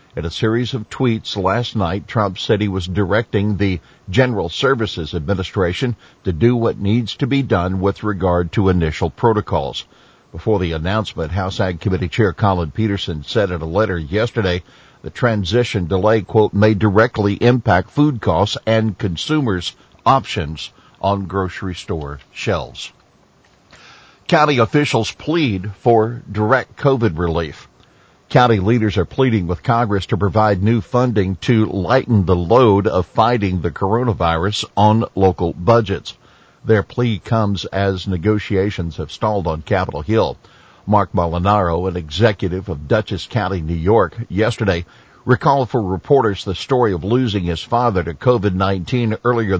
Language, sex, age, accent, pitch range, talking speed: English, male, 50-69, American, 95-115 Hz, 145 wpm